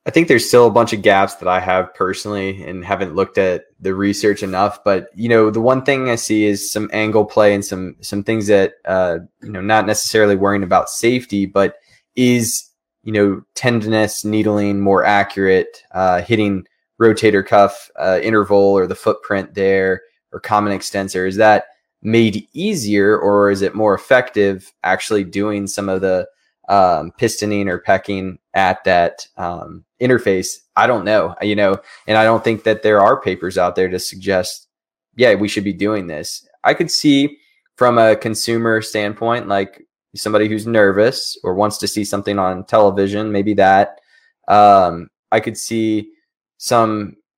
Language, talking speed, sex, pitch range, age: English, 170 wpm, male, 100-110 Hz, 20-39